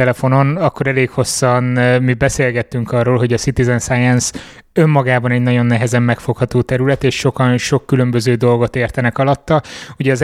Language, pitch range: Hungarian, 120-135 Hz